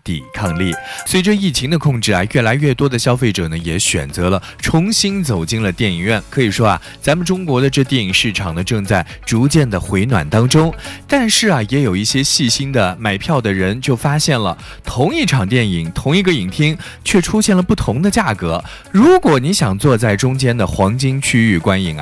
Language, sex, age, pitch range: Chinese, male, 20-39, 95-140 Hz